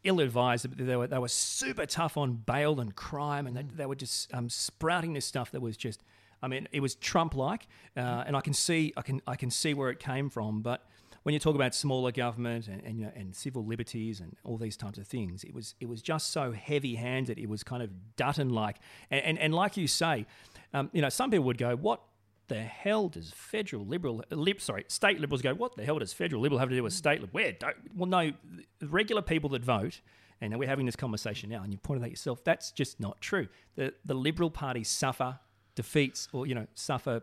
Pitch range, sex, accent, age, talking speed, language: 115-155 Hz, male, Australian, 40-59, 225 wpm, English